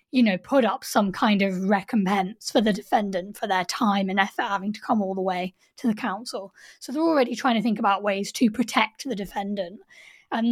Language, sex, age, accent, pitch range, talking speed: English, female, 20-39, British, 195-250 Hz, 215 wpm